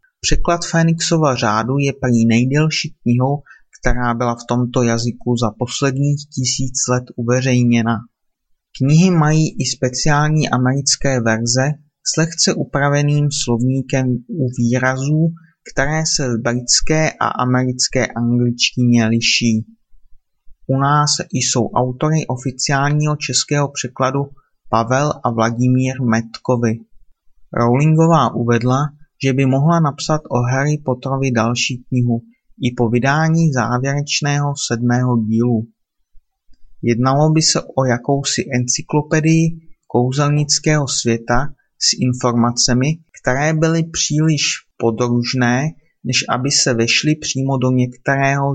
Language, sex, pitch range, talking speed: Czech, male, 120-150 Hz, 110 wpm